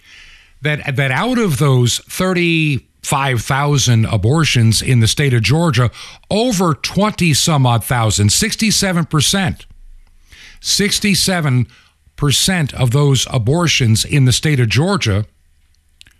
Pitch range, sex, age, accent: 100-155 Hz, male, 60-79, American